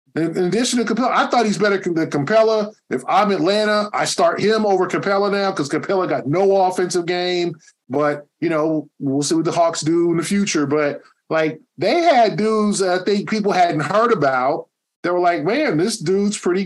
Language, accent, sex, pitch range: English, American, male, 160-205 Hz